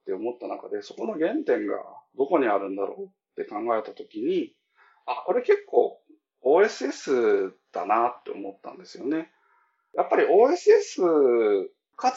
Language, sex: Japanese, male